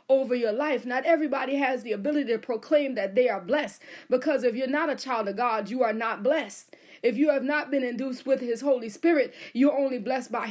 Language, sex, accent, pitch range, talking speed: English, female, American, 230-290 Hz, 230 wpm